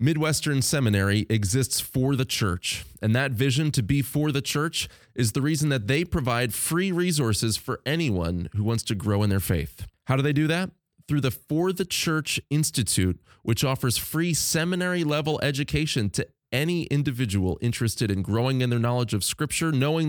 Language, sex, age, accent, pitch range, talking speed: English, male, 30-49, American, 105-145 Hz, 175 wpm